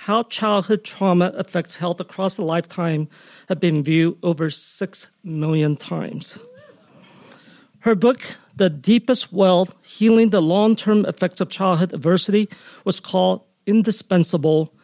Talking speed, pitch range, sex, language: 120 wpm, 170-200 Hz, male, English